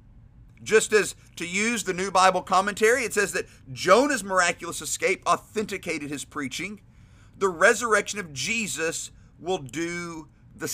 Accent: American